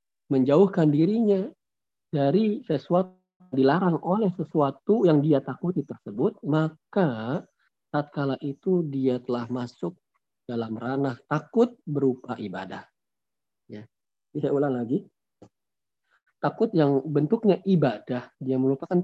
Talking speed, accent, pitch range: 105 wpm, native, 130-180 Hz